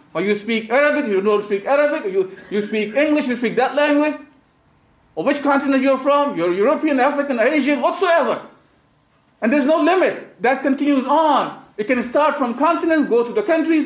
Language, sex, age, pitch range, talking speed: English, male, 50-69, 240-305 Hz, 185 wpm